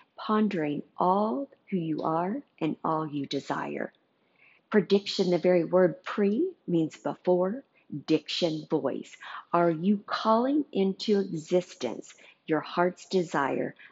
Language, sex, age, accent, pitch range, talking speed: English, female, 50-69, American, 155-185 Hz, 110 wpm